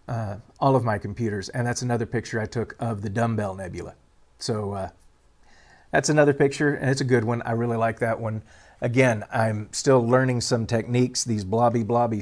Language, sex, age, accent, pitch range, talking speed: English, male, 40-59, American, 110-130 Hz, 190 wpm